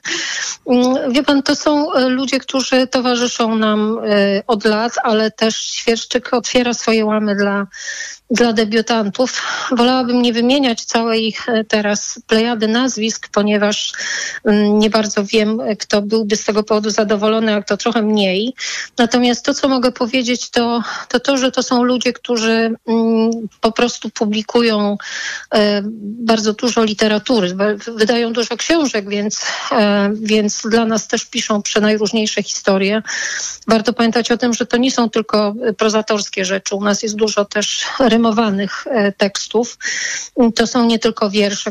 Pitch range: 210-240 Hz